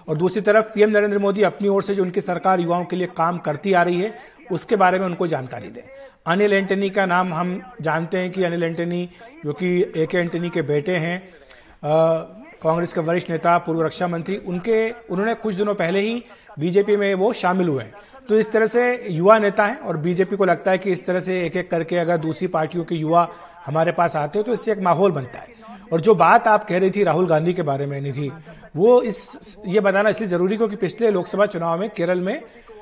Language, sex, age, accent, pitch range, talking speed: Hindi, male, 50-69, native, 170-210 Hz, 225 wpm